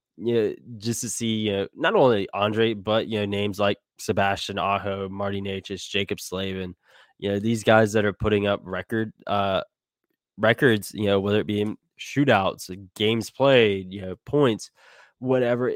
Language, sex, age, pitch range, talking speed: English, male, 10-29, 95-115 Hz, 175 wpm